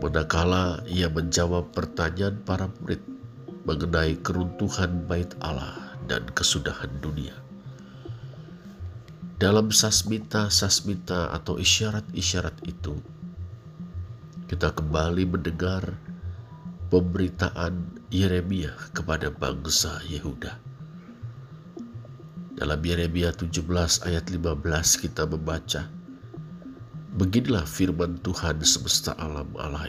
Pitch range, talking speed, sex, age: 85-115 Hz, 80 wpm, male, 50-69